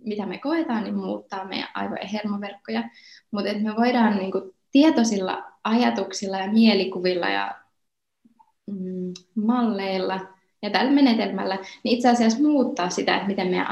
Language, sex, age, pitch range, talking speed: Finnish, female, 20-39, 190-235 Hz, 125 wpm